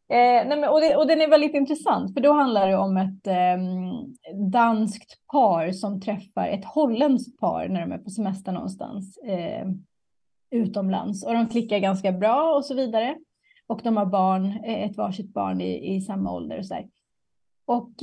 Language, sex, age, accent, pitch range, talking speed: Swedish, female, 30-49, native, 195-255 Hz, 175 wpm